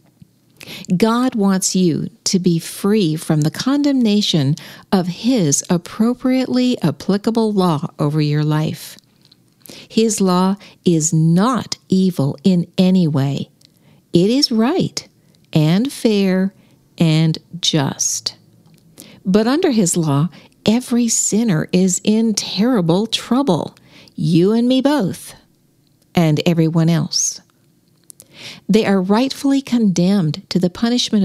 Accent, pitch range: American, 160-225 Hz